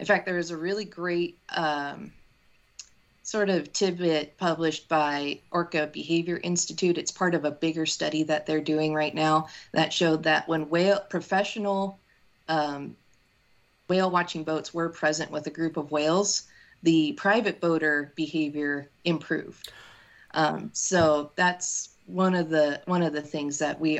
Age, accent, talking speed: 30-49, American, 155 wpm